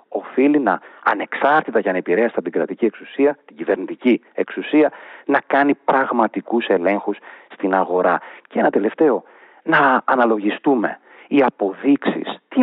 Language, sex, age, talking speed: Greek, male, 40-59, 125 wpm